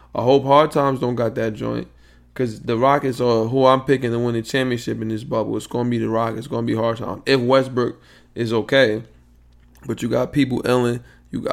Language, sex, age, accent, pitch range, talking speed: English, male, 20-39, American, 110-130 Hz, 225 wpm